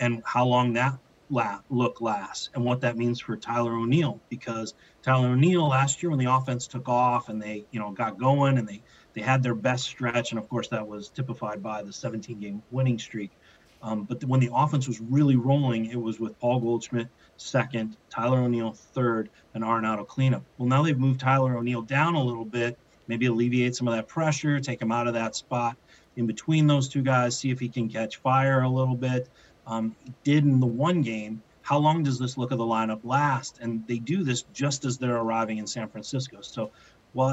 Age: 30-49